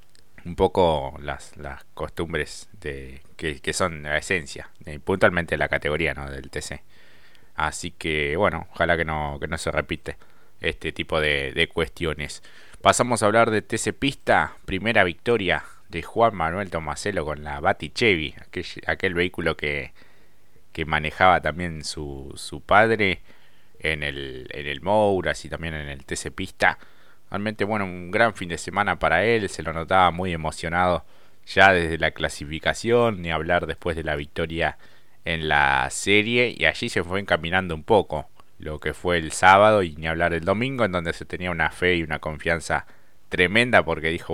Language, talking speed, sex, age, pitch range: Spanish, 170 wpm, male, 30-49, 80-95 Hz